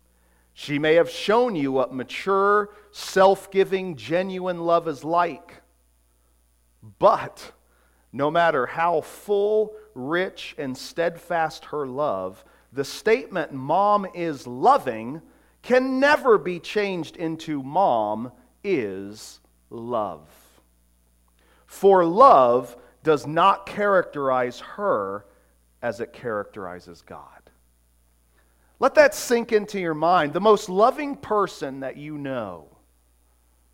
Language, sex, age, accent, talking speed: English, male, 40-59, American, 105 wpm